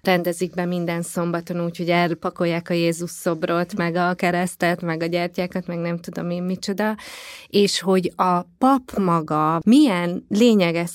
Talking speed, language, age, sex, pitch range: 150 wpm, Hungarian, 20-39, female, 175-190 Hz